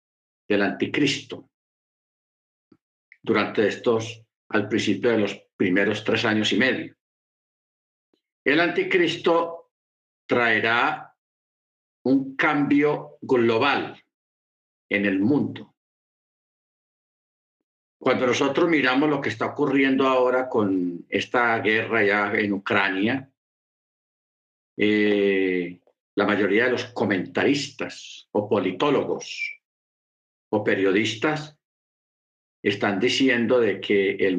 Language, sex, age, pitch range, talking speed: Spanish, male, 50-69, 100-135 Hz, 90 wpm